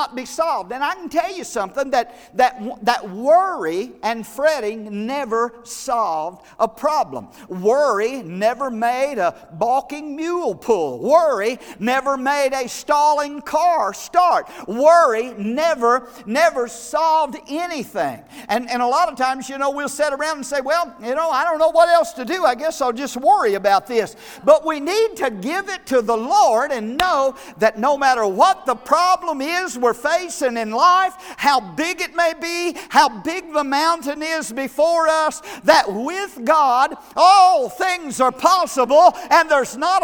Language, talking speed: English, 165 wpm